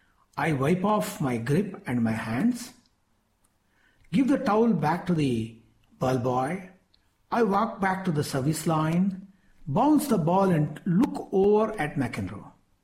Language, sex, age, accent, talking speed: English, male, 60-79, Indian, 145 wpm